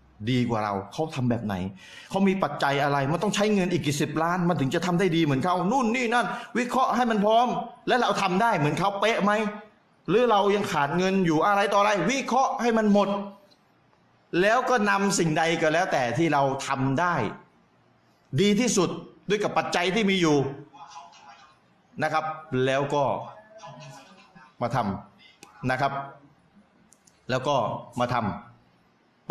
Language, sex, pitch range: Thai, male, 135-200 Hz